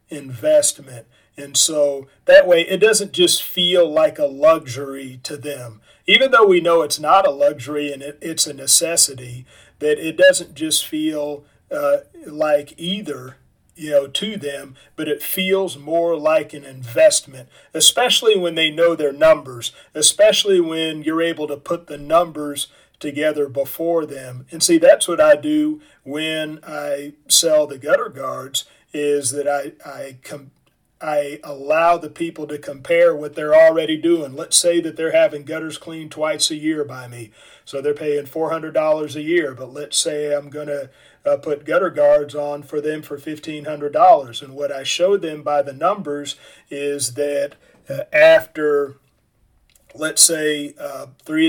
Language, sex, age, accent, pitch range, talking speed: English, male, 40-59, American, 145-175 Hz, 160 wpm